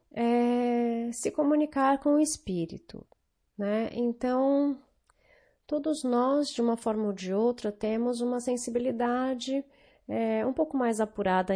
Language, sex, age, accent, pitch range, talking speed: Portuguese, female, 30-49, Brazilian, 200-265 Hz, 115 wpm